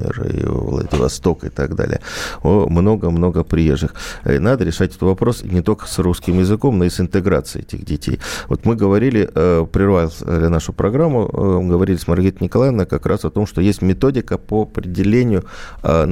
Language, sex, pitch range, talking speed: Russian, male, 90-115 Hz, 170 wpm